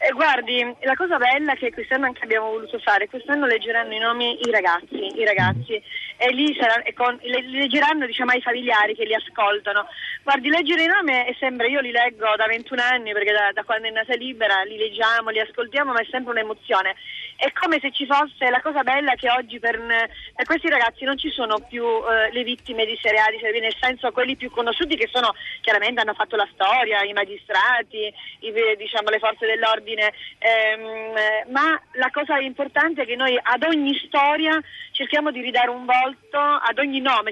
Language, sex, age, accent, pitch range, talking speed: Italian, female, 30-49, native, 225-280 Hz, 190 wpm